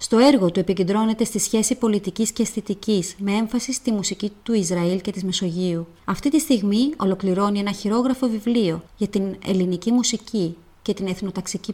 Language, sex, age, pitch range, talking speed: Greek, female, 30-49, 185-235 Hz, 165 wpm